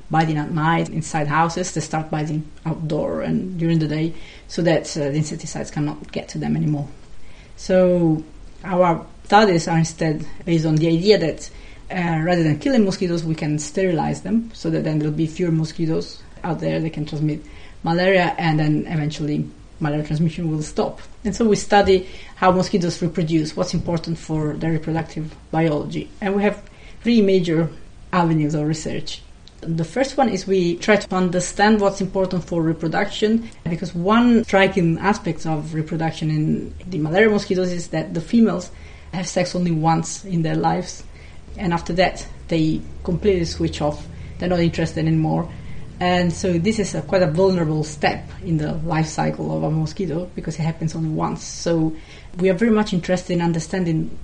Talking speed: 170 wpm